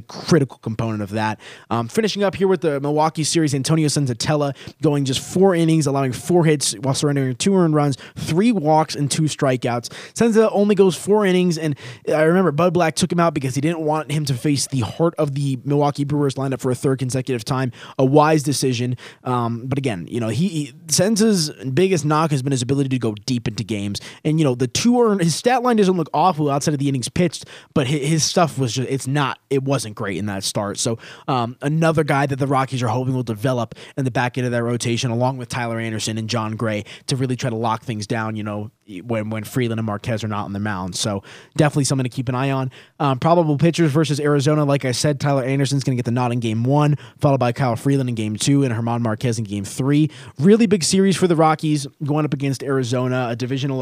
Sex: male